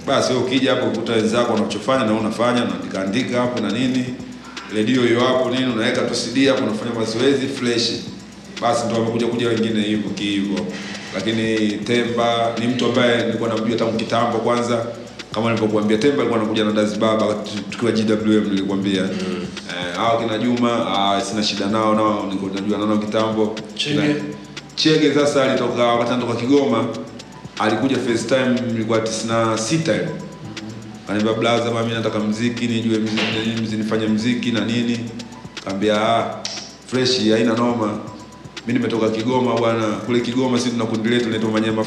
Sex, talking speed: male, 65 wpm